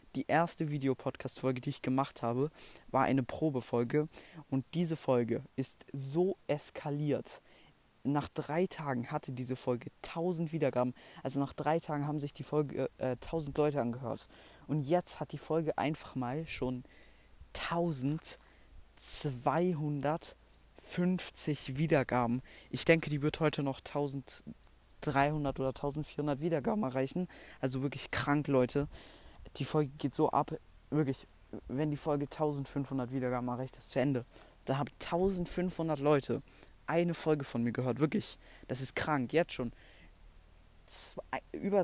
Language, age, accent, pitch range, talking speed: German, 20-39, German, 125-155 Hz, 135 wpm